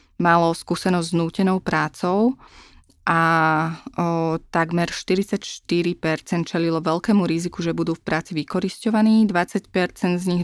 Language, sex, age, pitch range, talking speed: Slovak, female, 20-39, 165-185 Hz, 115 wpm